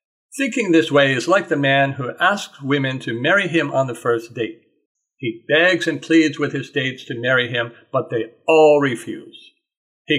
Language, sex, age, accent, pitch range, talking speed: English, male, 50-69, American, 125-165 Hz, 190 wpm